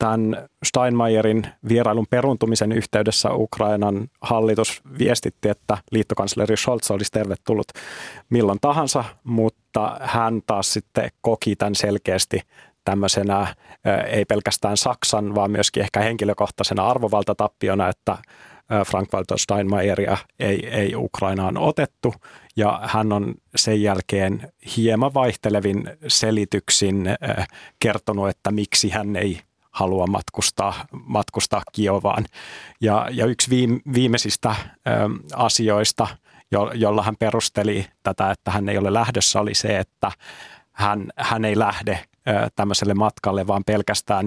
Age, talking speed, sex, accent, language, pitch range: 30-49, 110 wpm, male, native, Finnish, 100-110 Hz